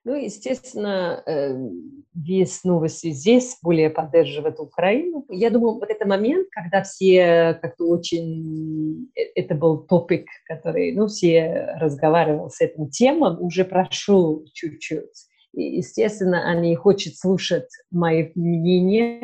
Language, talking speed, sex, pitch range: Russian, 115 wpm, female, 165-225 Hz